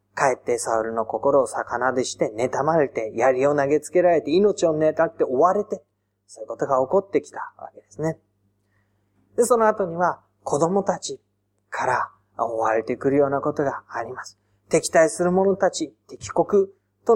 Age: 20-39